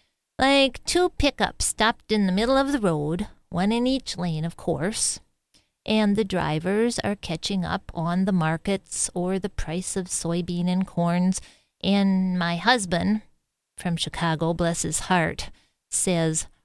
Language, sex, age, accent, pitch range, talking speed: English, female, 40-59, American, 170-220 Hz, 150 wpm